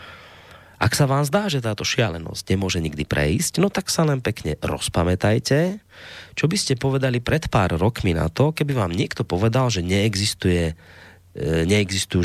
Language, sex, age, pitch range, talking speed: Slovak, male, 30-49, 90-135 Hz, 150 wpm